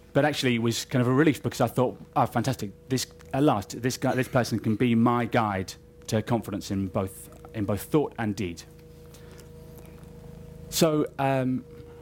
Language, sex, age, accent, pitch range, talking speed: English, male, 30-49, British, 105-145 Hz, 175 wpm